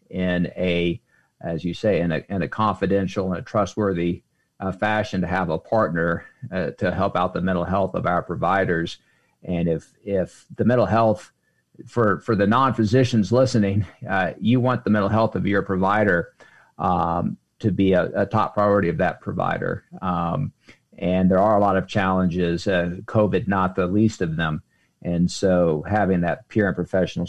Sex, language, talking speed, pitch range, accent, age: male, English, 180 wpm, 95-125 Hz, American, 50-69